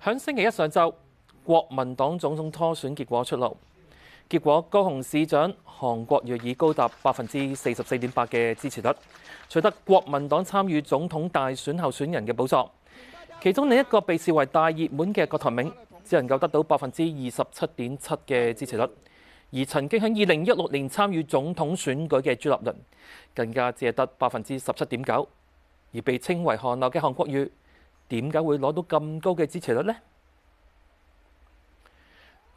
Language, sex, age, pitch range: Chinese, male, 30-49, 125-180 Hz